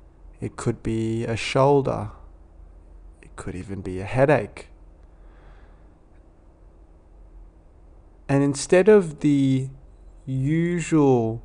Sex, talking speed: male, 85 wpm